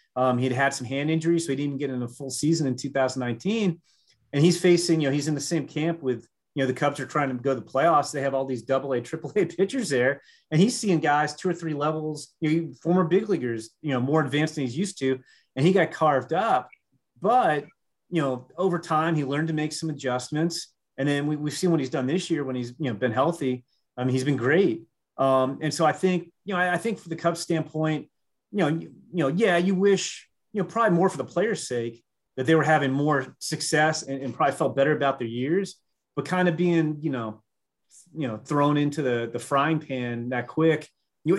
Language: English